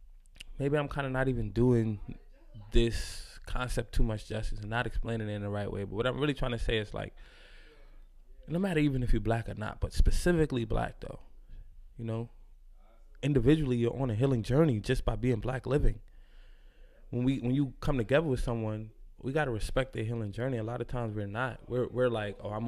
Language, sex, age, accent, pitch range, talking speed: English, male, 20-39, American, 105-130 Hz, 210 wpm